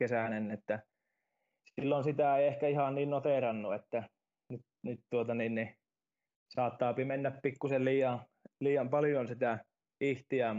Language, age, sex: Finnish, 20-39, male